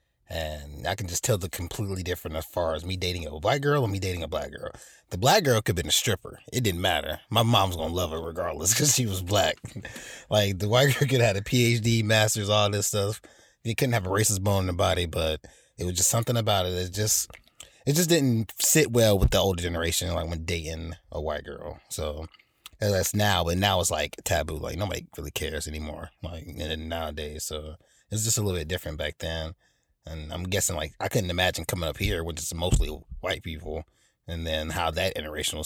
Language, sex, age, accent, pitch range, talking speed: English, male, 30-49, American, 80-110 Hz, 225 wpm